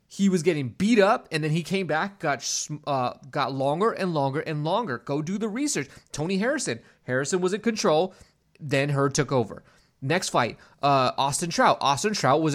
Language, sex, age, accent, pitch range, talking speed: English, male, 20-39, American, 145-195 Hz, 190 wpm